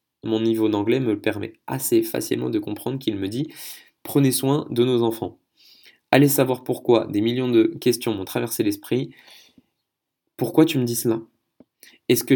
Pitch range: 110-135 Hz